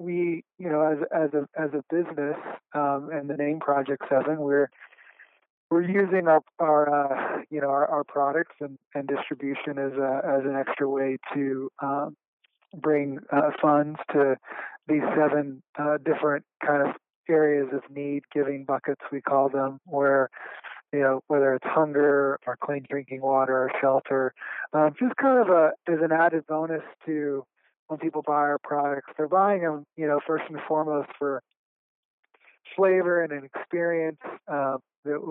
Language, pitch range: English, 140-155 Hz